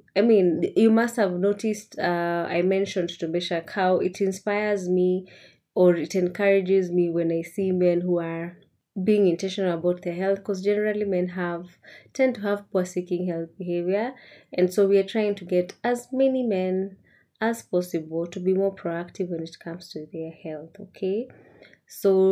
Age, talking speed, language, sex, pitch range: 20-39, 175 wpm, English, female, 180-225 Hz